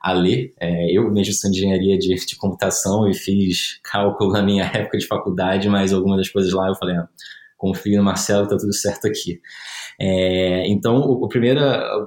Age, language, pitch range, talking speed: 20-39, Portuguese, 95-115 Hz, 195 wpm